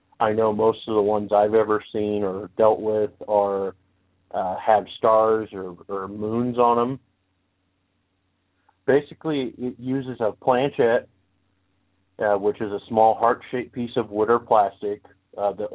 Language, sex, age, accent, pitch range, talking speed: English, male, 40-59, American, 100-120 Hz, 150 wpm